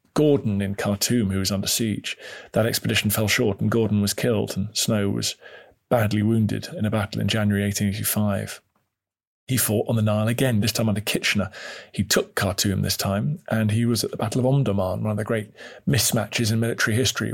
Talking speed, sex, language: 195 wpm, male, English